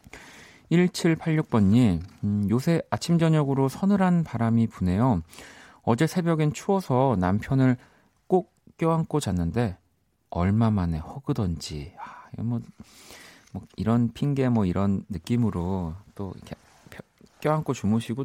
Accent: native